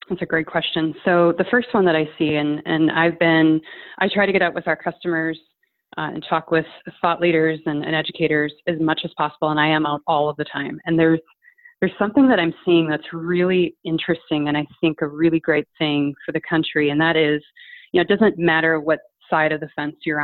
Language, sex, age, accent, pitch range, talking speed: English, female, 30-49, American, 150-170 Hz, 230 wpm